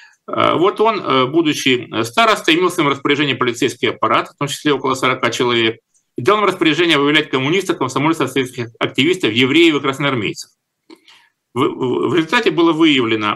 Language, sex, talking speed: Russian, male, 140 wpm